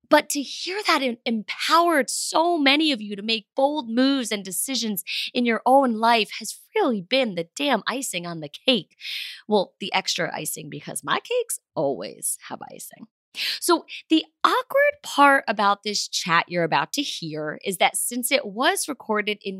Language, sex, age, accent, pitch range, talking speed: English, female, 20-39, American, 185-280 Hz, 170 wpm